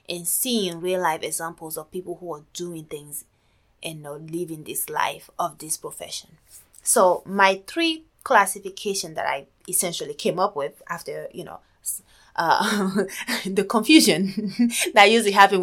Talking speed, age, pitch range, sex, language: 150 wpm, 20-39, 170-230 Hz, female, English